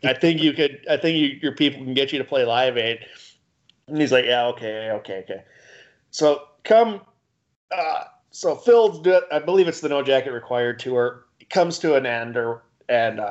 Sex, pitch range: male, 120-165 Hz